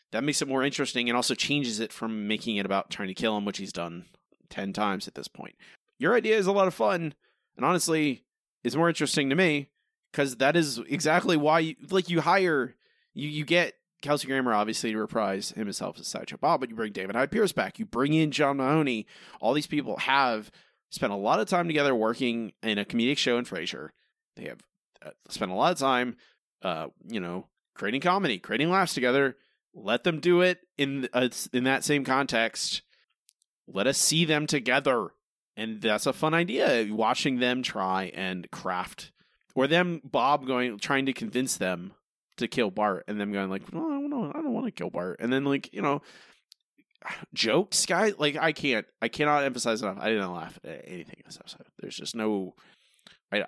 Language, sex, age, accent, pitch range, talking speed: English, male, 30-49, American, 115-155 Hz, 200 wpm